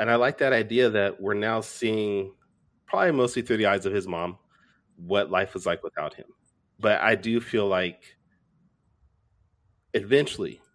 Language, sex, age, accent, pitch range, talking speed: English, male, 30-49, American, 90-115 Hz, 160 wpm